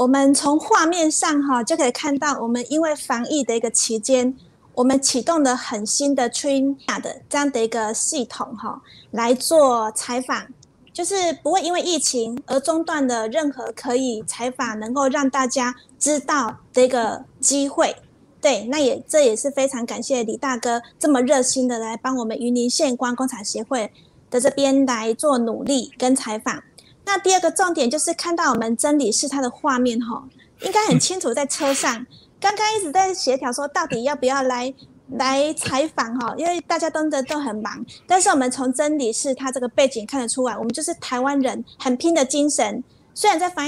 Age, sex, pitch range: 30-49, female, 245-300 Hz